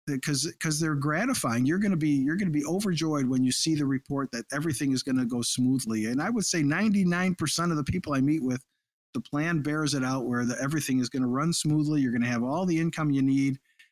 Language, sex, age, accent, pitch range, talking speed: English, male, 50-69, American, 130-165 Hz, 250 wpm